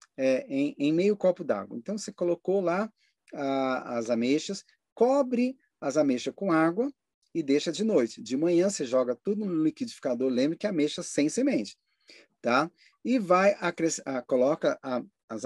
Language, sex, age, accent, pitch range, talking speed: Portuguese, male, 40-59, Brazilian, 155-240 Hz, 165 wpm